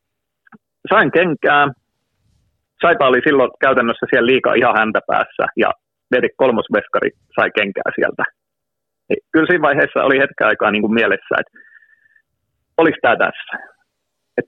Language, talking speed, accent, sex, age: Finnish, 130 wpm, native, male, 30-49